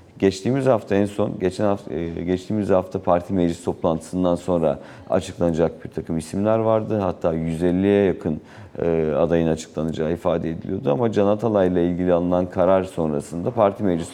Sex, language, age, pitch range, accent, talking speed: male, Turkish, 40-59, 85-110 Hz, native, 140 wpm